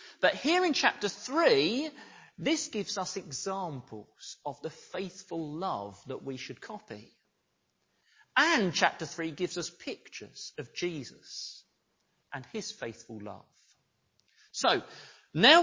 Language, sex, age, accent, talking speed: English, male, 40-59, British, 120 wpm